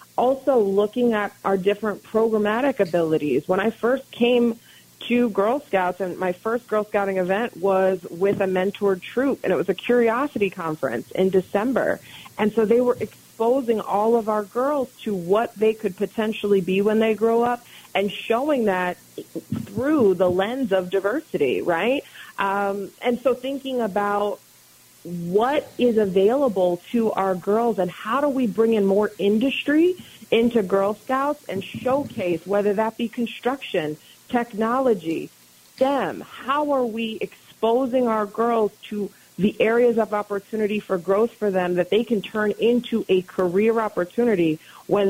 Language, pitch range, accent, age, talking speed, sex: English, 195-235 Hz, American, 30-49, 155 wpm, female